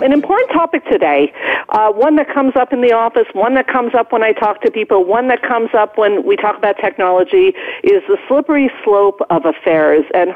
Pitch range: 190-305 Hz